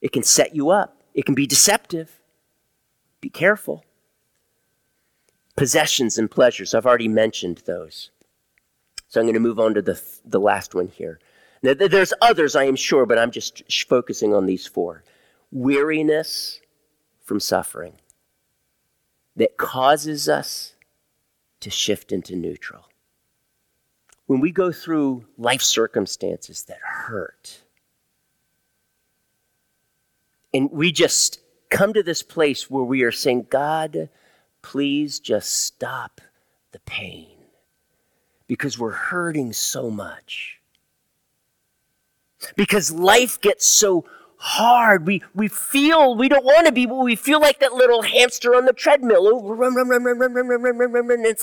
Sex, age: male, 50-69